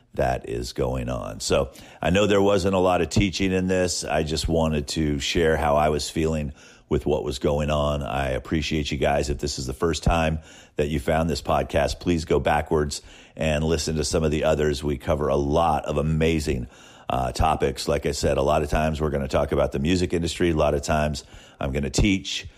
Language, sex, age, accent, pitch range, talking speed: English, male, 40-59, American, 70-85 Hz, 225 wpm